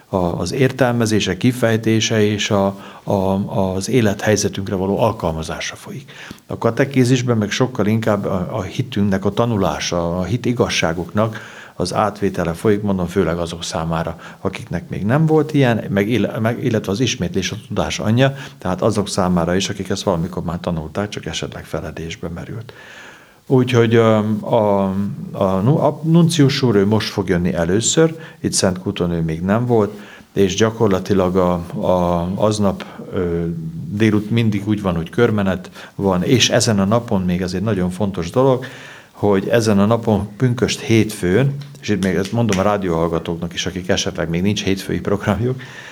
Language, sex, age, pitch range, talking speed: Hungarian, male, 60-79, 90-115 Hz, 150 wpm